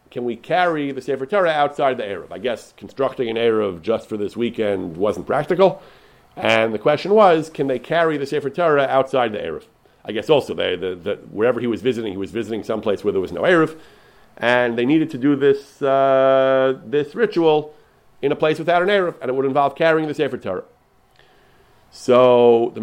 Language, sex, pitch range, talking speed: English, male, 120-155 Hz, 200 wpm